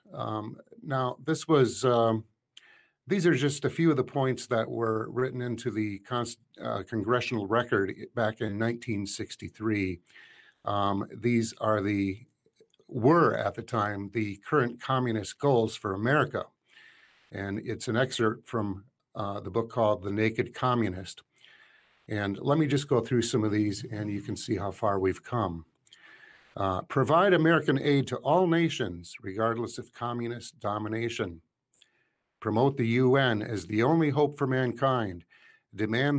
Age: 50-69